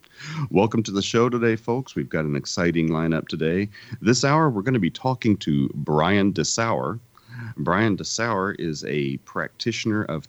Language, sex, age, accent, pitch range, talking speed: English, male, 40-59, American, 85-120 Hz, 165 wpm